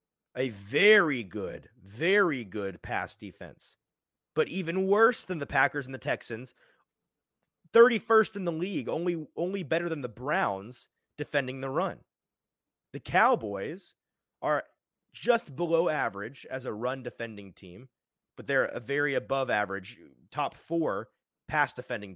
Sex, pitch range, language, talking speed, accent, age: male, 115-170 Hz, English, 125 wpm, American, 30-49